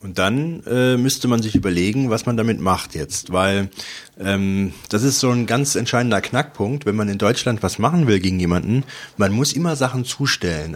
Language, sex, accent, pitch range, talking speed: German, male, German, 95-120 Hz, 195 wpm